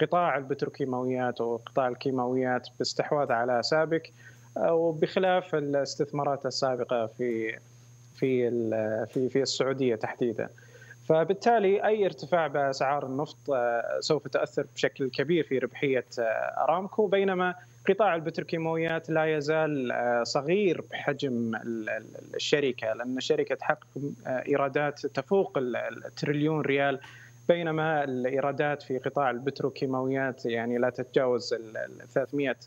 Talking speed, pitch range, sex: 95 wpm, 125-155 Hz, male